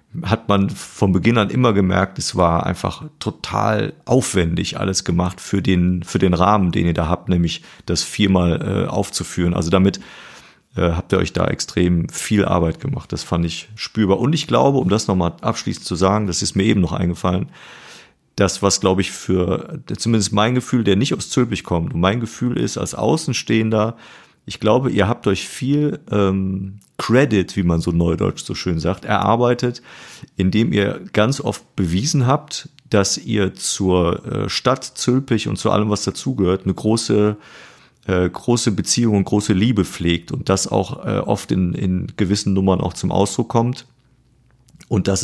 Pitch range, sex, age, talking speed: 95-115 Hz, male, 40-59, 180 wpm